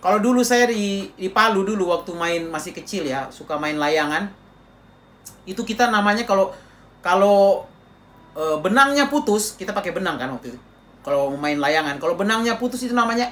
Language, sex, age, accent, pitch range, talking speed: Indonesian, male, 40-59, native, 170-235 Hz, 160 wpm